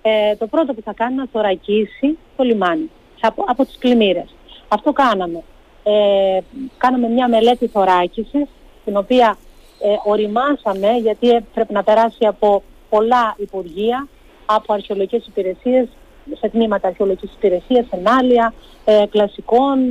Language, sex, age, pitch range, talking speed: Greek, female, 40-59, 195-245 Hz, 130 wpm